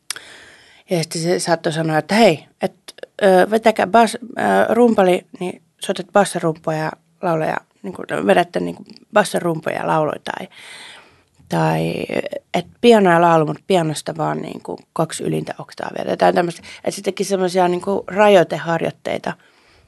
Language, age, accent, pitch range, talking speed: Finnish, 30-49, native, 155-195 Hz, 110 wpm